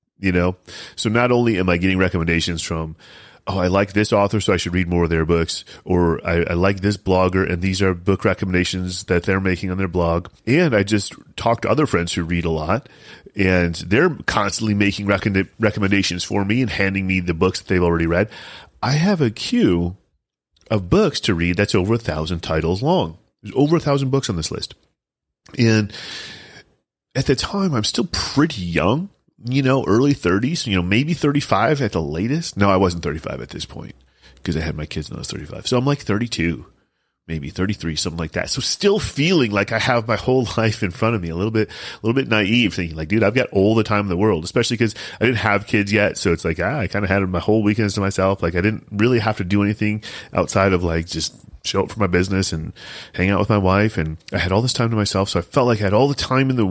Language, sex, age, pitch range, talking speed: English, male, 30-49, 90-110 Hz, 235 wpm